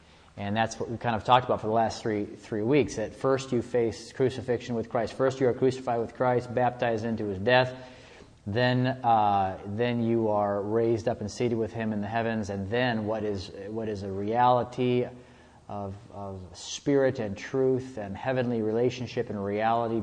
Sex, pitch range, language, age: male, 105-125 Hz, English, 30-49